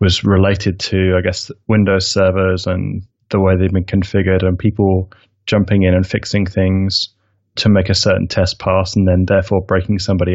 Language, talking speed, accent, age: English, 180 wpm, British, 20-39